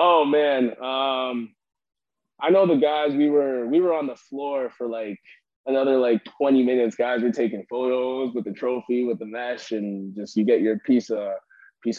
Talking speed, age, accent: 190 wpm, 20-39, American